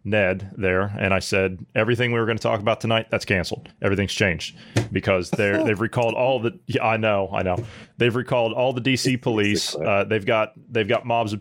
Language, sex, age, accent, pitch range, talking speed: English, male, 30-49, American, 100-125 Hz, 215 wpm